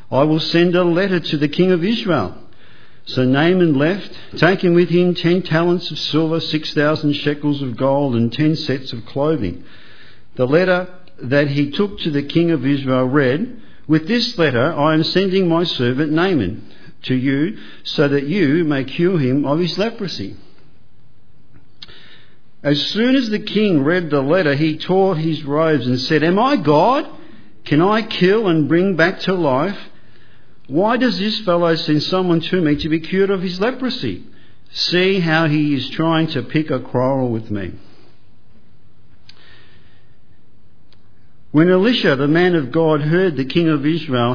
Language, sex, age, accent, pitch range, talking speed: English, male, 50-69, Australian, 130-175 Hz, 165 wpm